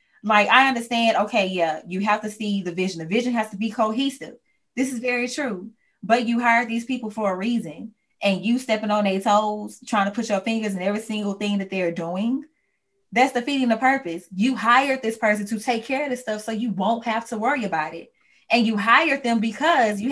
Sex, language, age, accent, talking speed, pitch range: female, English, 20-39, American, 225 wpm, 200-245 Hz